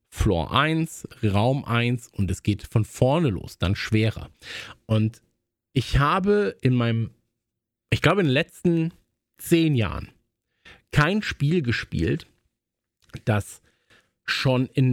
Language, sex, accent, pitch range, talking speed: German, male, German, 110-160 Hz, 120 wpm